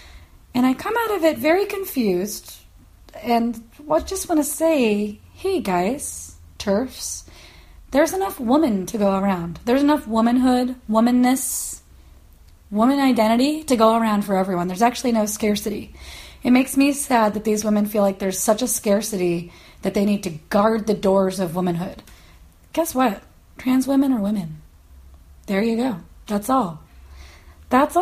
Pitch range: 195-275 Hz